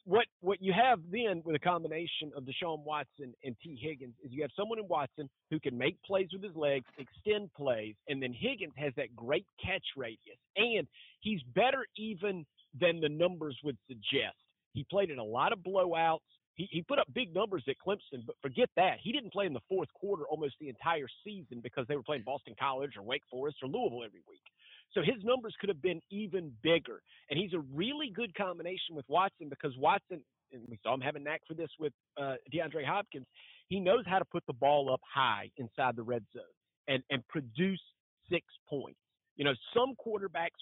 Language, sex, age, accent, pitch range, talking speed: English, male, 40-59, American, 140-190 Hz, 210 wpm